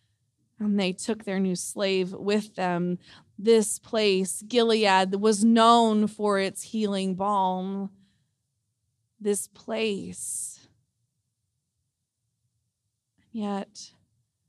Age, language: 20-39, English